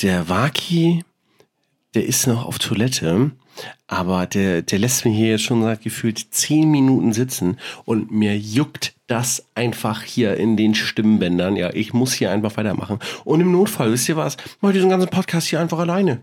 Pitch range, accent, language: 110-170 Hz, German, German